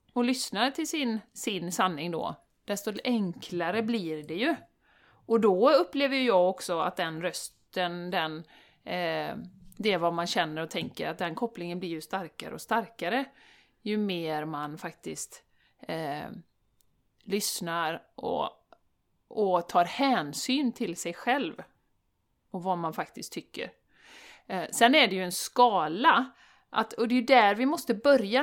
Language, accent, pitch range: Swedish, native, 175-240 Hz